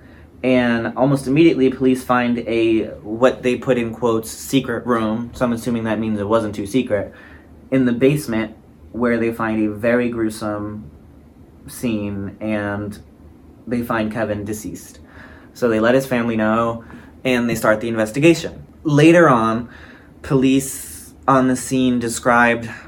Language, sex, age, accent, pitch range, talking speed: English, male, 20-39, American, 105-125 Hz, 145 wpm